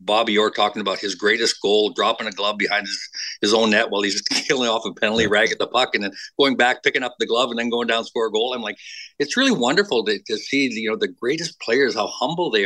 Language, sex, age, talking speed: English, male, 50-69, 275 wpm